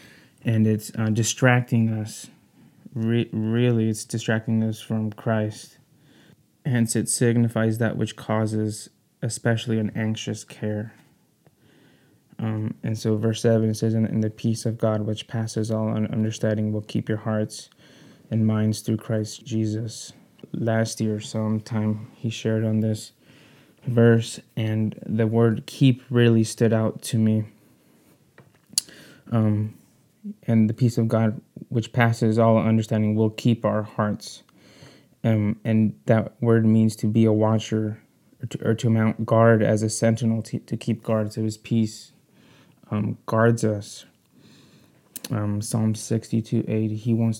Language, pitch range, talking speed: English, 110-115 Hz, 140 wpm